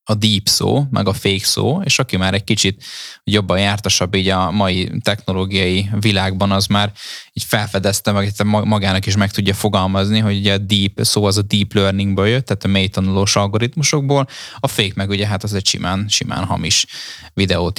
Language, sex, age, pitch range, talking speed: Hungarian, male, 10-29, 95-115 Hz, 185 wpm